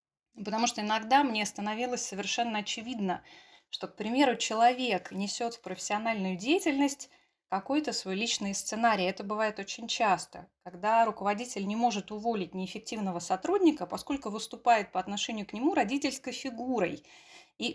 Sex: female